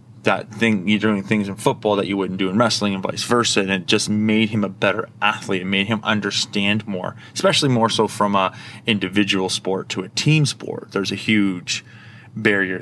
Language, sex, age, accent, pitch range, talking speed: English, male, 20-39, American, 100-115 Hz, 205 wpm